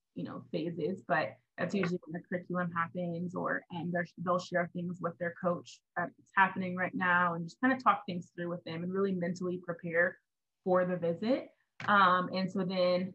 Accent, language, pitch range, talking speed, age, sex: American, English, 175-195 Hz, 185 wpm, 20-39, female